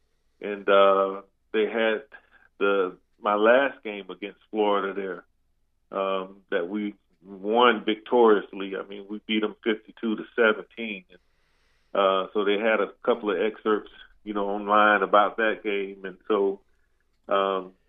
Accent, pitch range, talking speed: American, 100-115 Hz, 140 wpm